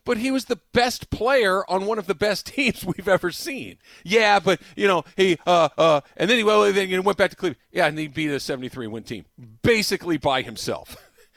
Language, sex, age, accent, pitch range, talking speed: English, male, 40-59, American, 120-190 Hz, 210 wpm